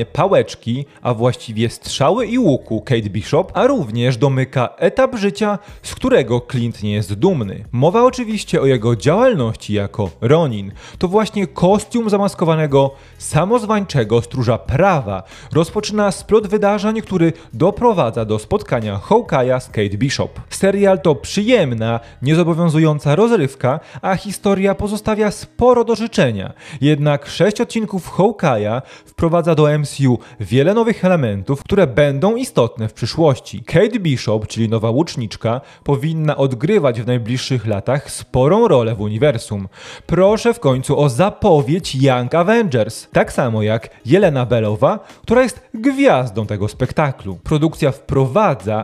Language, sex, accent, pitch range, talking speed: Polish, male, native, 115-190 Hz, 125 wpm